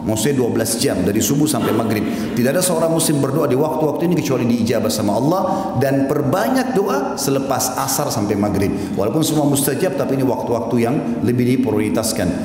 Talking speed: 175 wpm